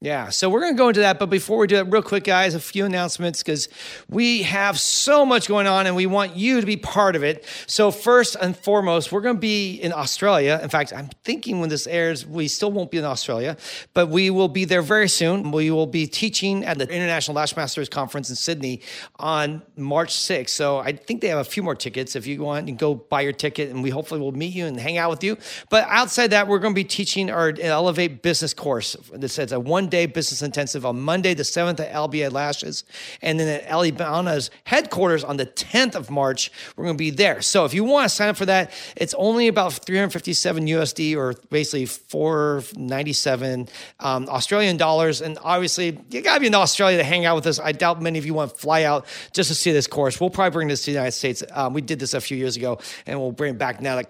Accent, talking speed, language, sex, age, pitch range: American, 245 wpm, English, male, 40-59, 150-200 Hz